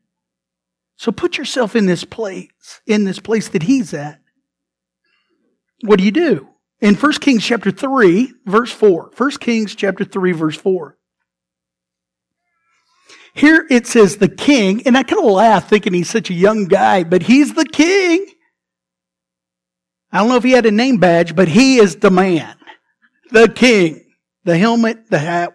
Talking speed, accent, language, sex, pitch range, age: 160 wpm, American, English, male, 175-240 Hz, 50-69